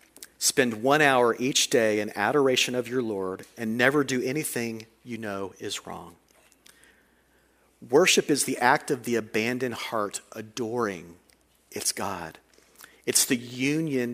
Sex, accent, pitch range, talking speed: male, American, 120-155 Hz, 135 wpm